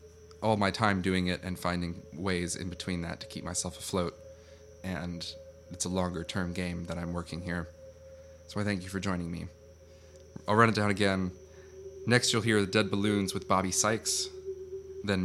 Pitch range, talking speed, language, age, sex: 90-115 Hz, 180 wpm, English, 20-39, male